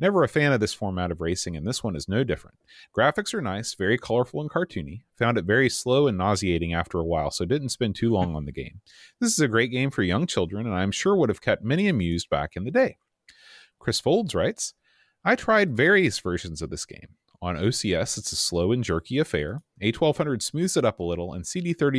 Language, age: English, 30-49